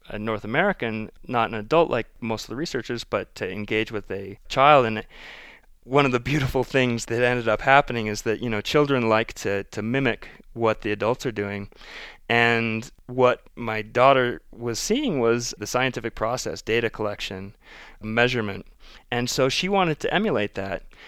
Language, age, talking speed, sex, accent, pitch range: English, 30-49, 175 wpm, male, American, 105-125 Hz